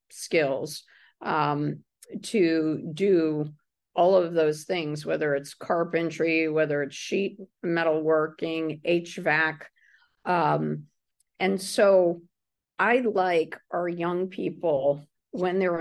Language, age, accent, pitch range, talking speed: English, 50-69, American, 160-195 Hz, 105 wpm